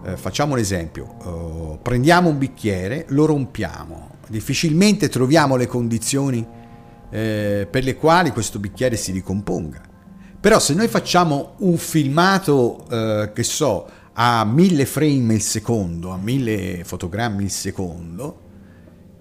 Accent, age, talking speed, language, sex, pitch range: native, 50-69, 110 wpm, Italian, male, 100-150 Hz